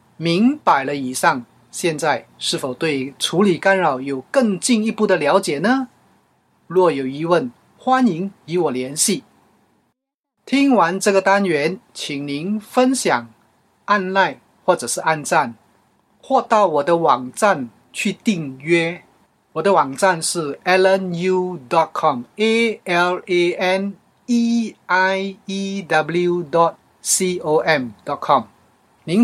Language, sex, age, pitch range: Chinese, male, 30-49, 160-210 Hz